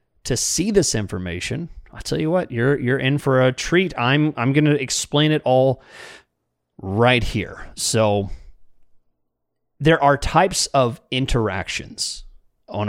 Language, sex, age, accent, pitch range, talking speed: English, male, 30-49, American, 105-140 Hz, 135 wpm